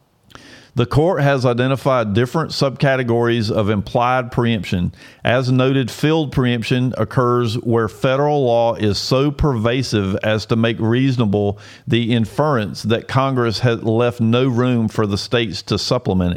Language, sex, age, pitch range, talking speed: English, male, 50-69, 110-130 Hz, 135 wpm